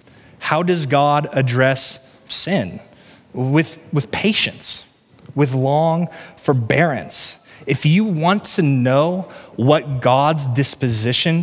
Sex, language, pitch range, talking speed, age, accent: male, English, 125-160 Hz, 100 wpm, 30-49, American